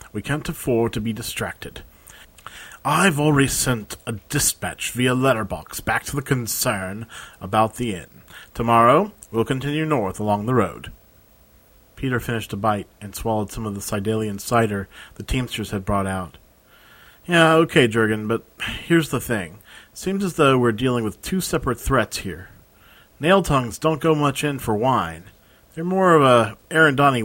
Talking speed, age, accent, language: 165 wpm, 40-59, American, English